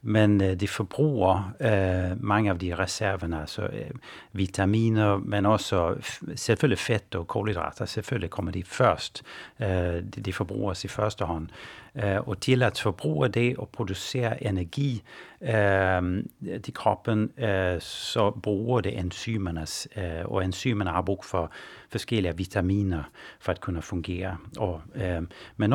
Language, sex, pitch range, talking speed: Danish, male, 95-120 Hz, 140 wpm